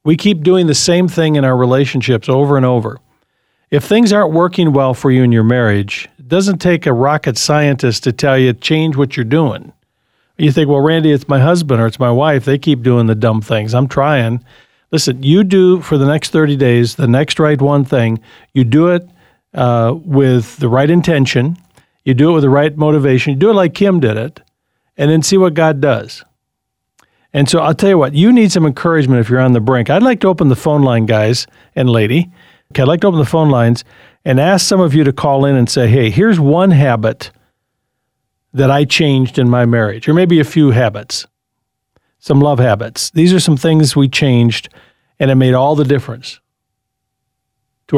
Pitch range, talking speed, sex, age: 125-155 Hz, 210 wpm, male, 50-69